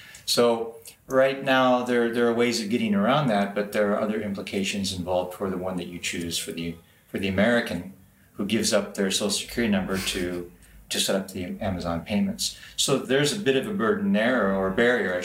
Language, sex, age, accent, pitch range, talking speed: English, male, 40-59, American, 95-120 Hz, 215 wpm